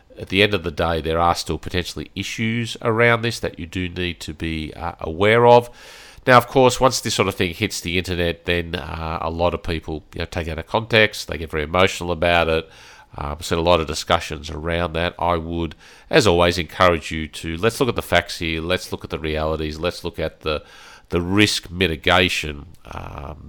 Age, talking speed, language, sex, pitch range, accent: 40-59, 220 wpm, English, male, 80-95 Hz, Australian